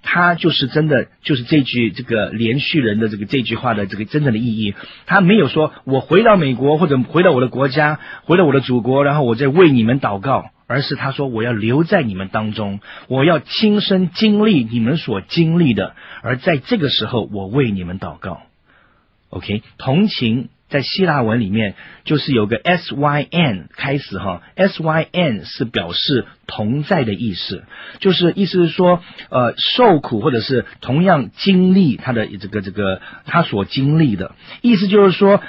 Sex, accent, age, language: male, native, 40-59, Chinese